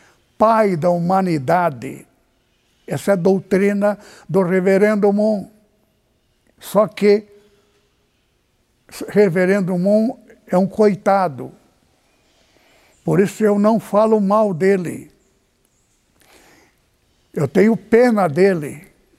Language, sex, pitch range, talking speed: Portuguese, male, 185-225 Hz, 90 wpm